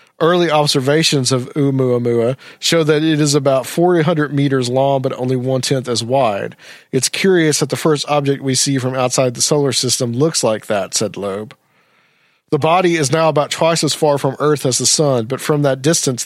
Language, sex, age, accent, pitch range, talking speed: English, male, 40-59, American, 125-150 Hz, 190 wpm